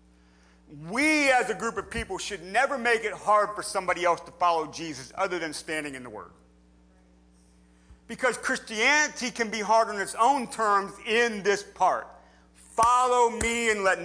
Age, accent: 40-59, American